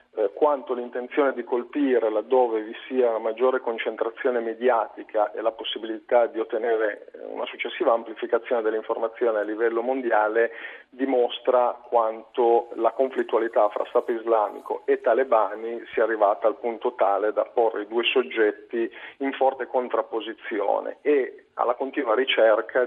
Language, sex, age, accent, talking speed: Italian, male, 40-59, native, 130 wpm